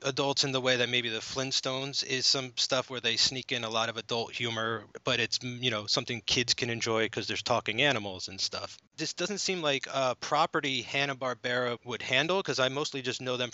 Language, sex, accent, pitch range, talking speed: English, male, American, 110-140 Hz, 215 wpm